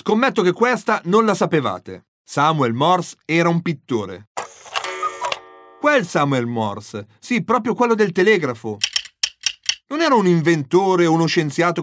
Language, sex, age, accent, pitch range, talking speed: Italian, male, 40-59, native, 135-220 Hz, 130 wpm